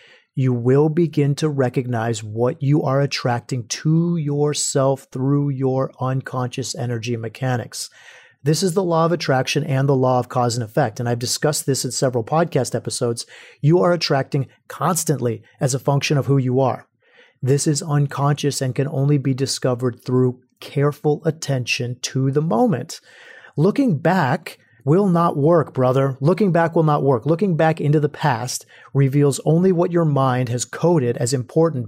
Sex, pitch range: male, 125-160 Hz